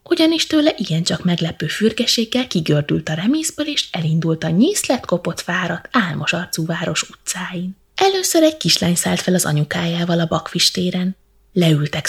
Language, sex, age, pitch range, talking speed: Hungarian, female, 20-39, 165-230 Hz, 145 wpm